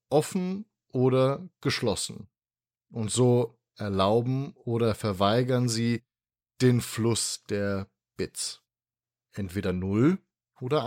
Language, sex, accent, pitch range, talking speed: German, male, German, 105-130 Hz, 90 wpm